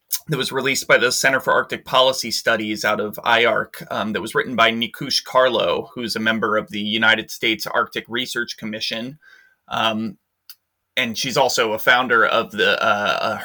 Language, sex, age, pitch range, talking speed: English, male, 30-49, 110-135 Hz, 180 wpm